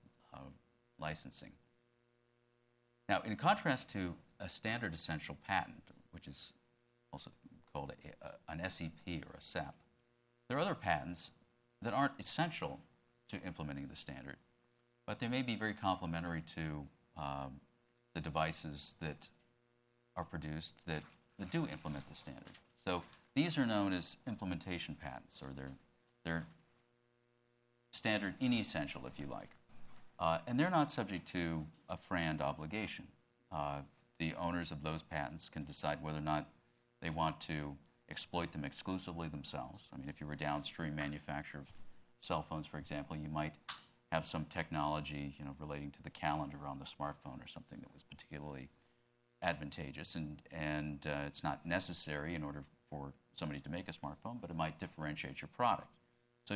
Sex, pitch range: male, 75-120 Hz